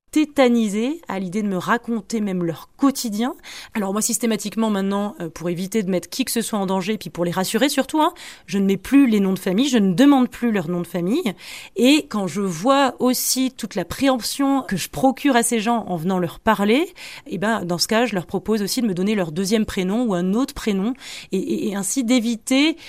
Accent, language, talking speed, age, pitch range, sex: French, French, 225 wpm, 20-39, 190-245 Hz, female